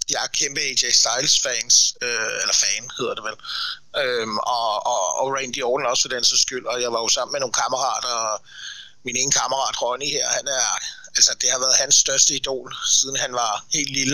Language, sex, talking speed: Danish, male, 210 wpm